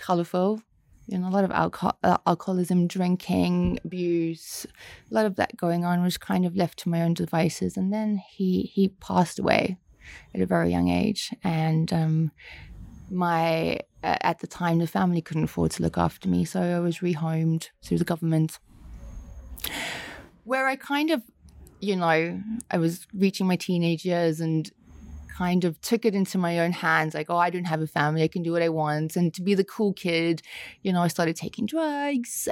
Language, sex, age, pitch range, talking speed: English, female, 30-49, 160-200 Hz, 190 wpm